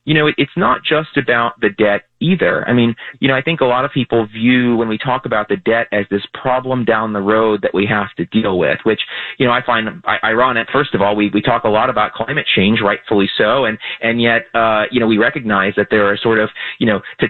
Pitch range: 115-155 Hz